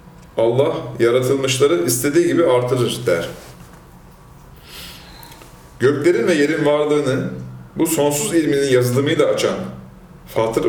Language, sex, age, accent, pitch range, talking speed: Turkish, male, 40-59, native, 100-150 Hz, 90 wpm